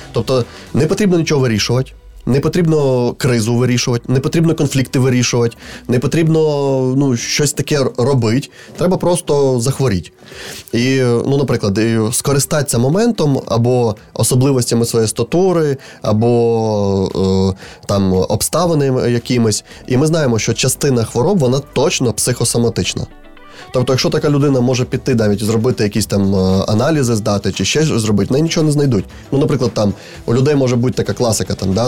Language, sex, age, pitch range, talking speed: Ukrainian, male, 20-39, 100-135 Hz, 140 wpm